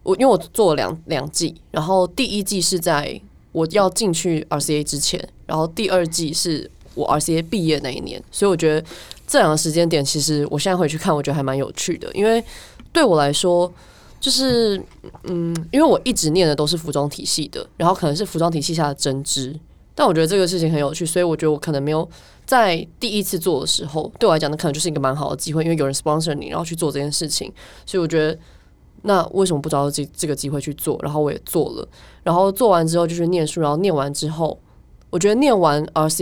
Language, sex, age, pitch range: Chinese, female, 20-39, 150-180 Hz